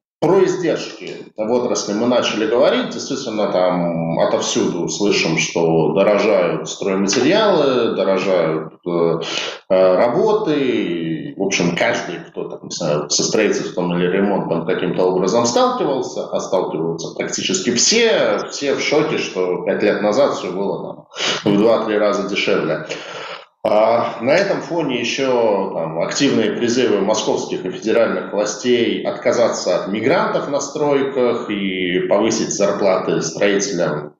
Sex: male